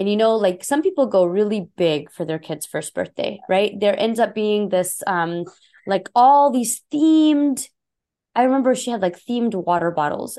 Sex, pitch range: female, 195-265 Hz